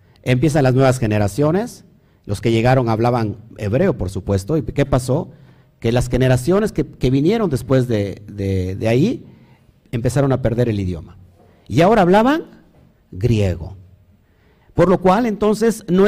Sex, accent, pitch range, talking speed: male, Mexican, 105-170 Hz, 145 wpm